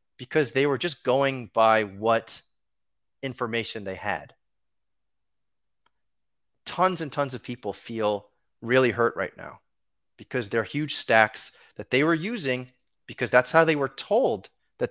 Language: English